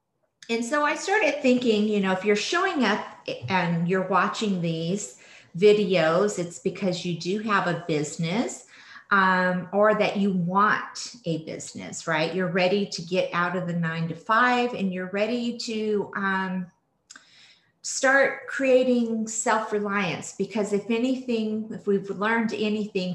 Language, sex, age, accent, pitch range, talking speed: English, female, 40-59, American, 180-230 Hz, 145 wpm